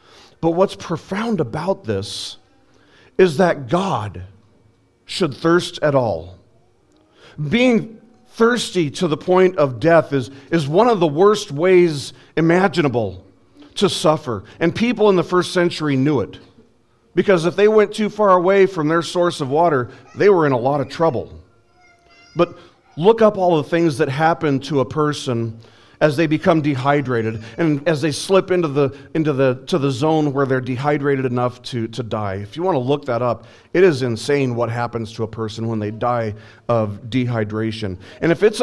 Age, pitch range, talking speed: 40-59, 115-170 Hz, 175 wpm